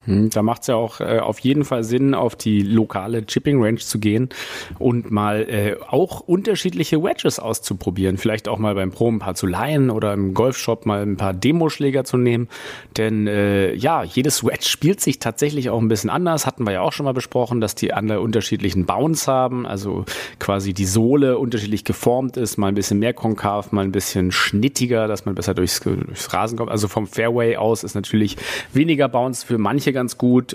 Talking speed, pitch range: 195 wpm, 105-135 Hz